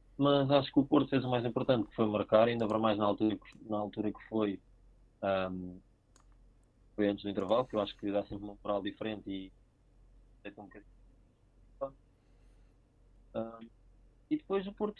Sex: male